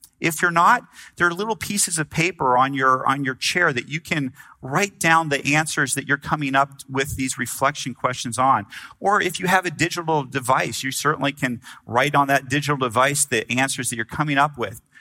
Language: English